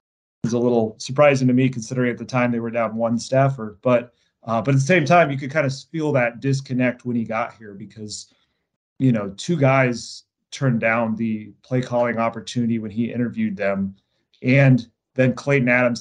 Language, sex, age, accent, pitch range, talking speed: English, male, 30-49, American, 115-130 Hz, 190 wpm